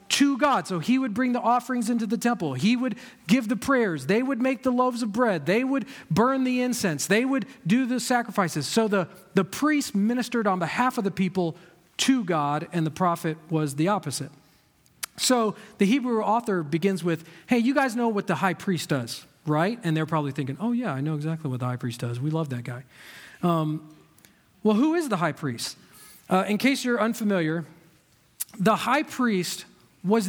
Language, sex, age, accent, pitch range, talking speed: English, male, 40-59, American, 165-240 Hz, 200 wpm